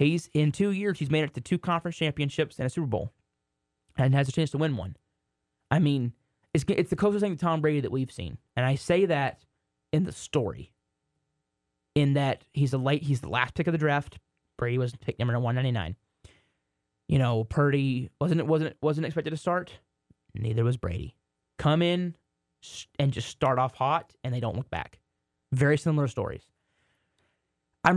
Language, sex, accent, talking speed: English, male, American, 185 wpm